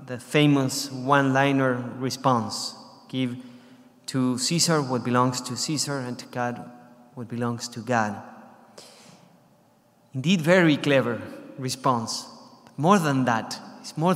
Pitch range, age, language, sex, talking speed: 130-165 Hz, 30-49, English, male, 115 wpm